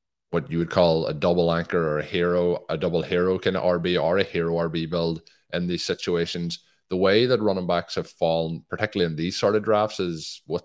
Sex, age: male, 20-39